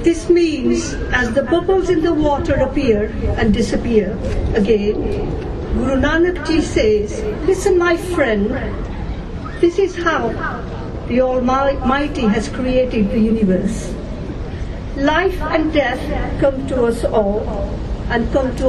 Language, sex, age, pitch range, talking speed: English, female, 50-69, 225-310 Hz, 120 wpm